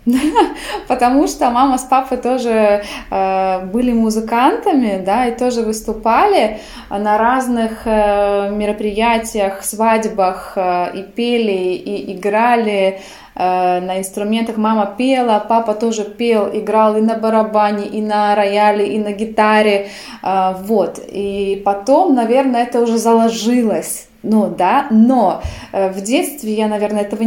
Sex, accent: female, native